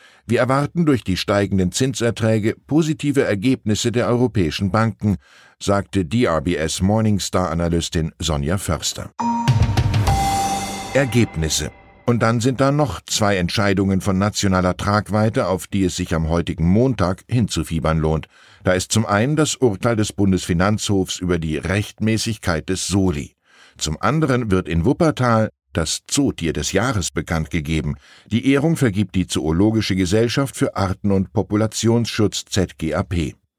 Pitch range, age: 90-115 Hz, 10-29